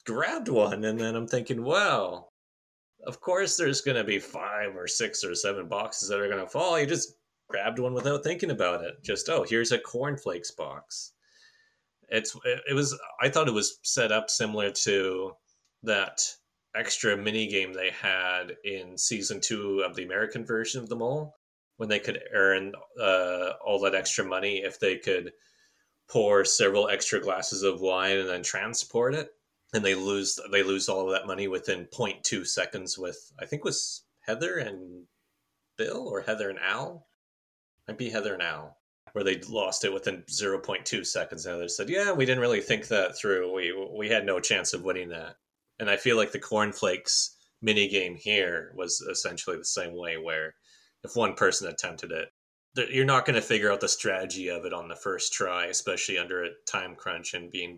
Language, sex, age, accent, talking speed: English, male, 30-49, American, 190 wpm